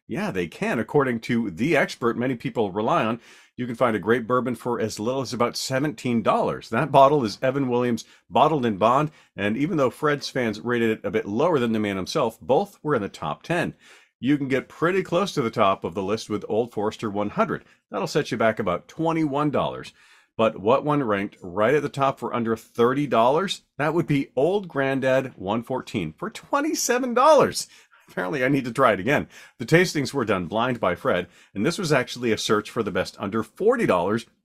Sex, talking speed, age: male, 200 wpm, 40-59